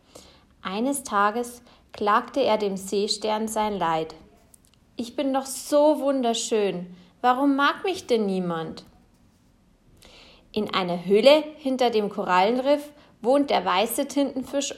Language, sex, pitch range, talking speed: German, female, 190-250 Hz, 115 wpm